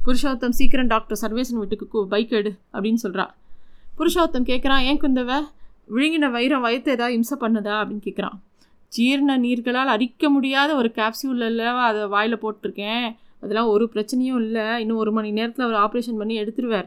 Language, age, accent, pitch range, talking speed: Tamil, 20-39, native, 215-255 Hz, 155 wpm